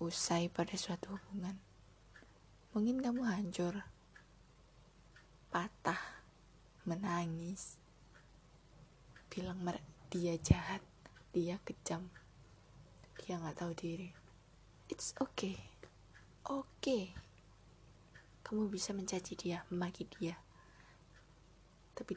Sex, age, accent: female, 20-39, native